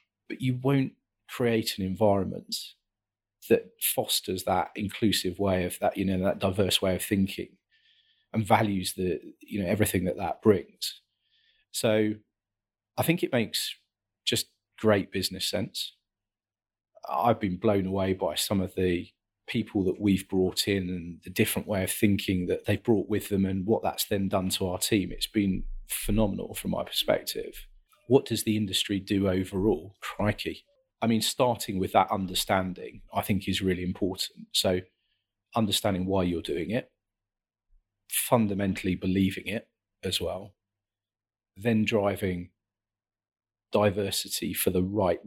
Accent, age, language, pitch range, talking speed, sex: British, 40-59, English, 95-110 Hz, 145 wpm, male